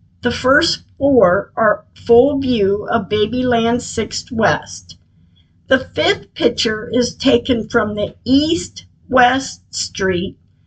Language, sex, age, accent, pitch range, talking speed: English, female, 50-69, American, 185-260 Hz, 105 wpm